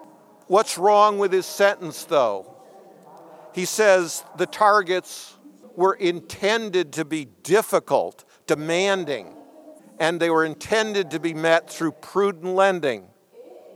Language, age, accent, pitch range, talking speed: English, 50-69, American, 165-200 Hz, 115 wpm